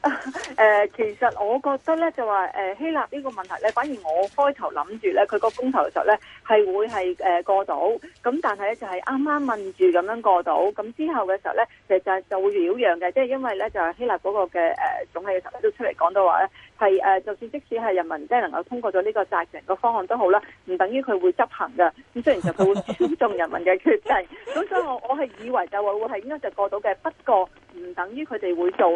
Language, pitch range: Chinese, 190-280 Hz